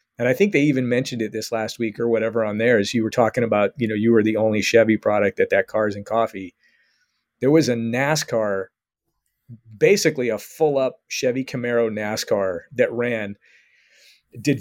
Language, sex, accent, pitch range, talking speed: English, male, American, 115-140 Hz, 185 wpm